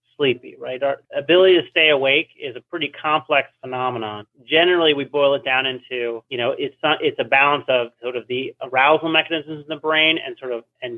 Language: English